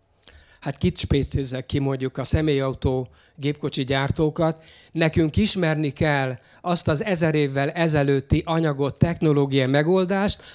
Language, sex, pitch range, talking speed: Hungarian, male, 135-165 Hz, 115 wpm